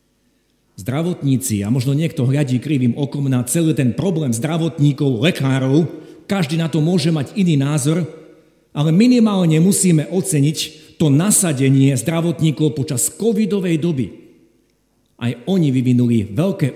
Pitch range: 125-185 Hz